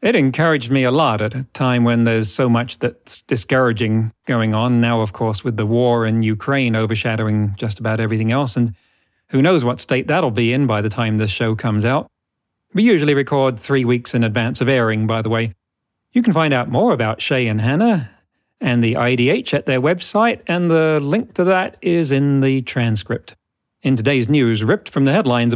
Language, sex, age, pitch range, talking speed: English, male, 40-59, 115-160 Hz, 205 wpm